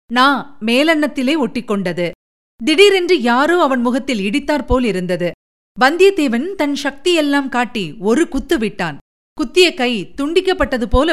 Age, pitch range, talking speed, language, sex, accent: 50-69, 205-285 Hz, 100 wpm, Tamil, female, native